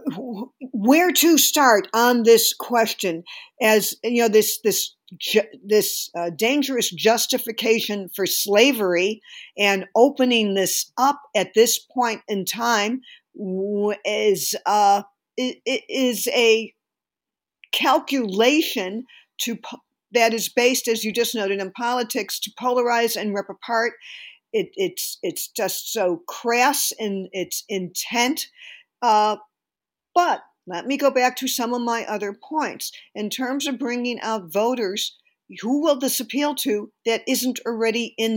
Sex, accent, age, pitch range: female, American, 50-69, 205-255 Hz